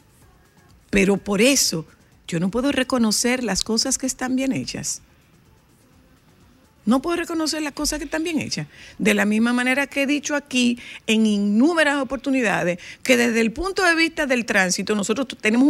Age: 50-69